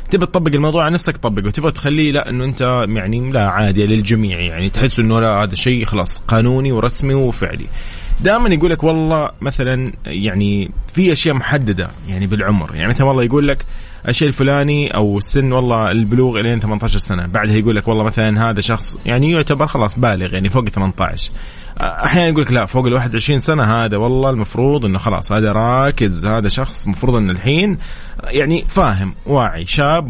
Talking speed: 175 wpm